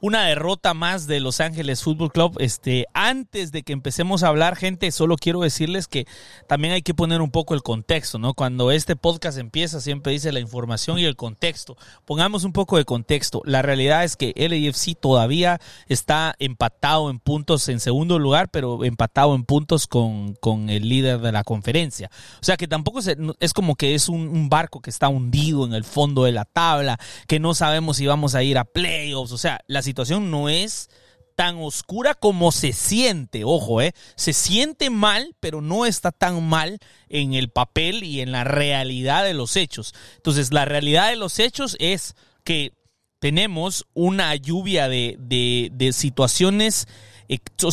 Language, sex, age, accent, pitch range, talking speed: Spanish, male, 30-49, Mexican, 130-170 Hz, 185 wpm